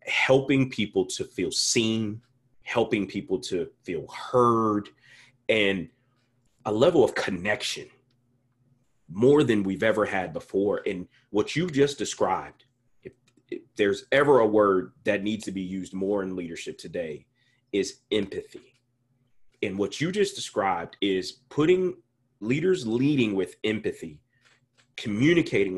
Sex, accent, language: male, American, English